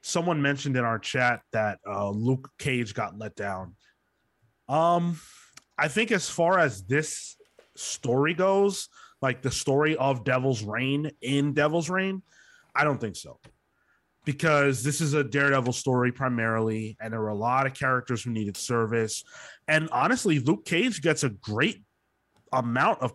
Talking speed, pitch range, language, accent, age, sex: 155 wpm, 120-155 Hz, English, American, 20-39, male